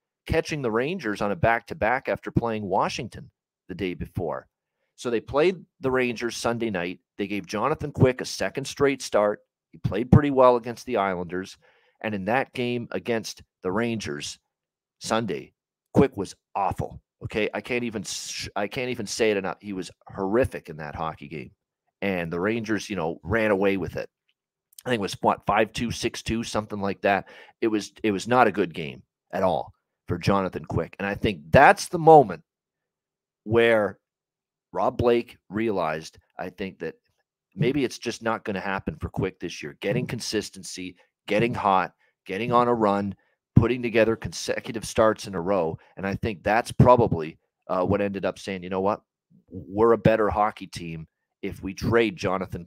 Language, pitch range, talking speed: English, 95-120 Hz, 180 wpm